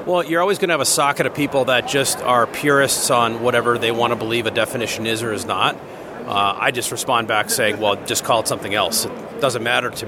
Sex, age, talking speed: male, 40-59, 250 wpm